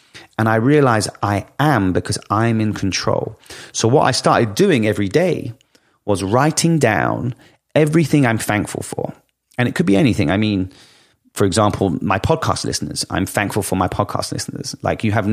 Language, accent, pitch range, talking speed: English, British, 100-135 Hz, 170 wpm